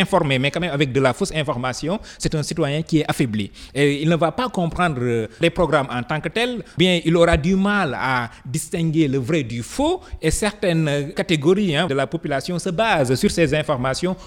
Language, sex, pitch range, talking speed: French, male, 135-185 Hz, 205 wpm